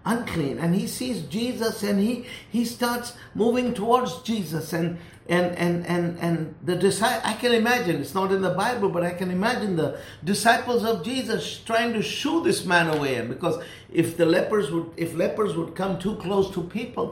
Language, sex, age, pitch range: English, male, 60-79, 130-200 Hz